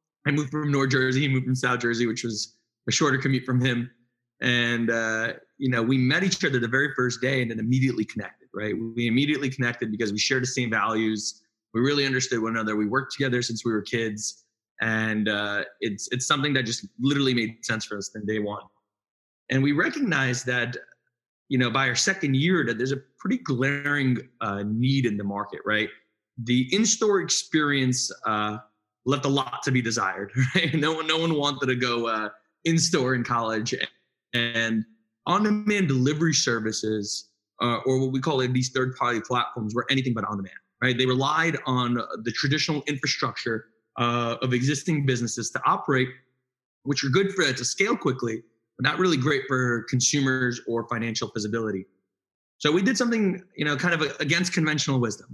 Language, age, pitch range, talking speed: English, 20-39, 115-140 Hz, 180 wpm